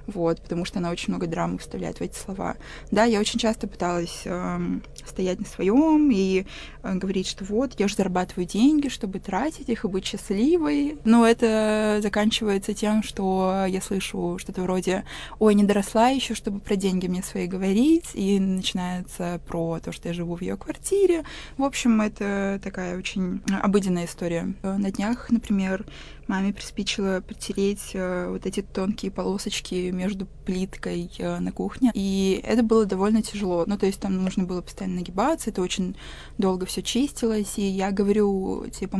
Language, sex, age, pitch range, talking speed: Russian, female, 20-39, 185-215 Hz, 165 wpm